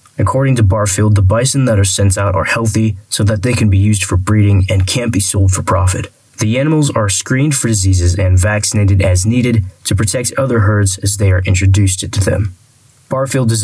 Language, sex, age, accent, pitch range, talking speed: English, male, 20-39, American, 100-115 Hz, 205 wpm